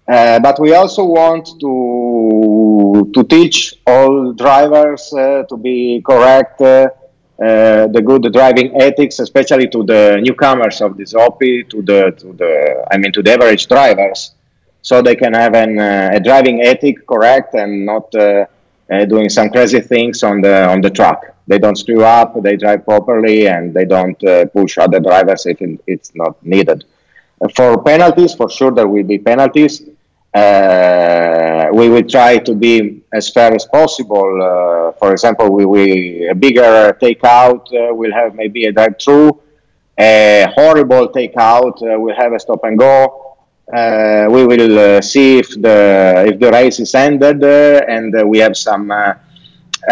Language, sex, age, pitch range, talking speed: English, male, 30-49, 105-135 Hz, 170 wpm